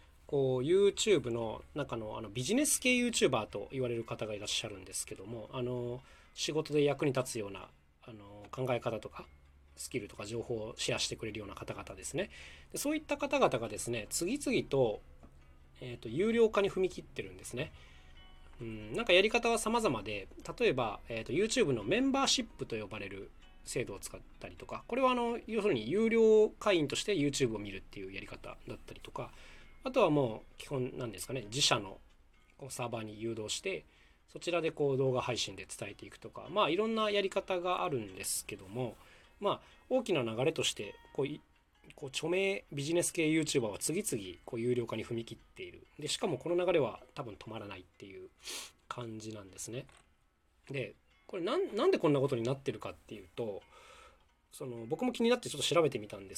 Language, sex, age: Japanese, male, 20-39